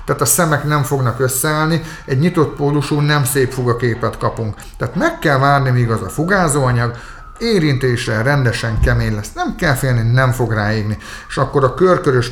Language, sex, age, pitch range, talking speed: Hungarian, male, 50-69, 115-150 Hz, 175 wpm